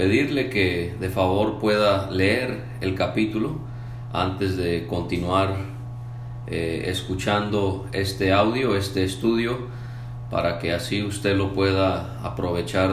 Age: 40-59